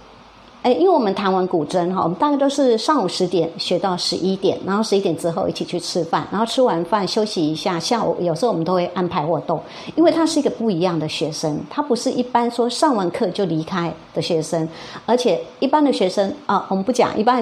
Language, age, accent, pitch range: Chinese, 50-69, American, 175-240 Hz